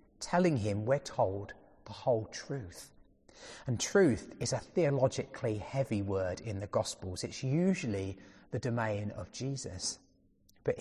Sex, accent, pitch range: male, British, 105-145 Hz